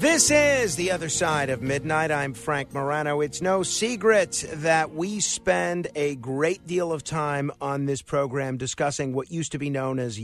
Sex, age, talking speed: male, 50-69, 180 wpm